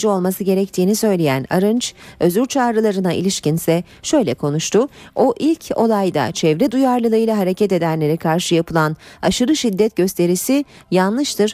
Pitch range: 165-235 Hz